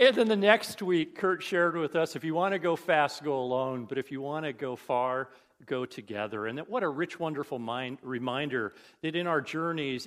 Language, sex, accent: English, male, American